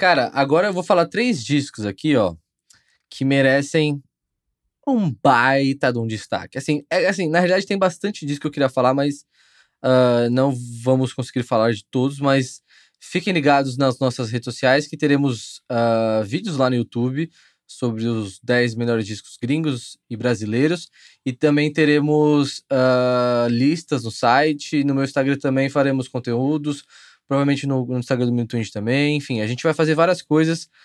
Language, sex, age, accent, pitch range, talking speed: Portuguese, male, 20-39, Brazilian, 125-150 Hz, 165 wpm